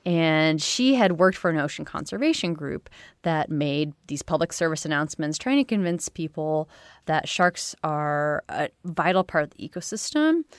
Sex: female